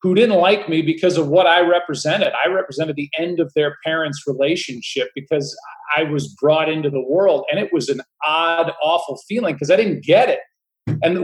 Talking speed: 200 wpm